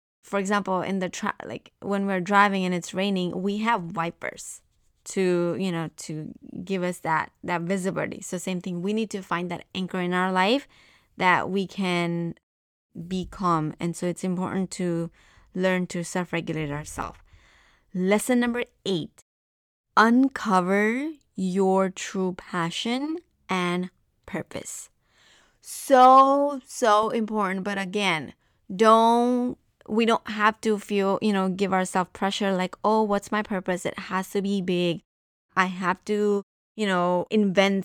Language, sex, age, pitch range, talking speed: English, female, 20-39, 180-215 Hz, 145 wpm